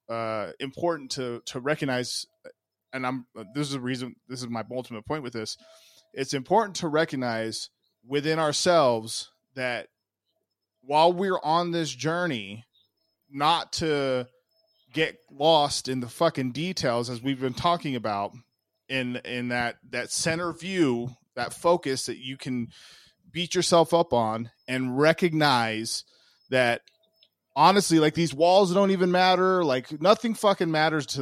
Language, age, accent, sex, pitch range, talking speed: English, 20-39, American, male, 125-175 Hz, 140 wpm